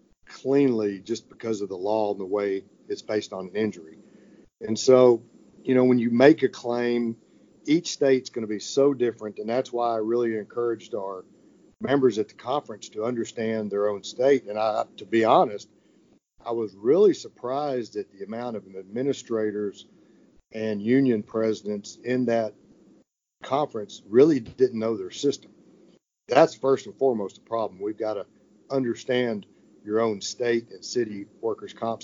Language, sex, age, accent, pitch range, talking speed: English, male, 50-69, American, 110-130 Hz, 165 wpm